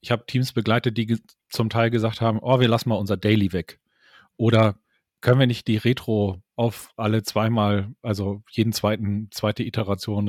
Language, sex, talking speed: German, male, 175 wpm